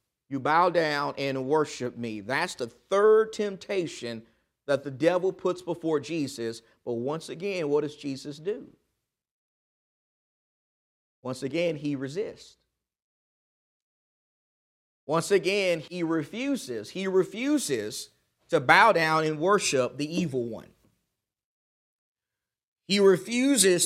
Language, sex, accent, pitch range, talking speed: English, male, American, 145-195 Hz, 110 wpm